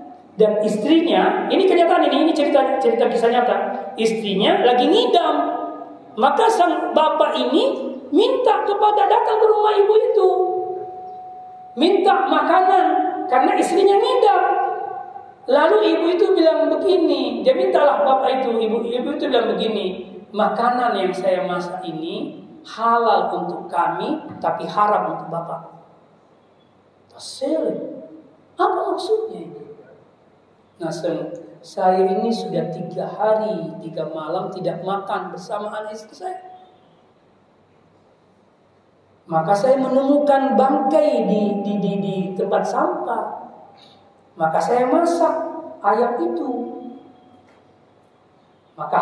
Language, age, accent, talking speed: Indonesian, 40-59, native, 105 wpm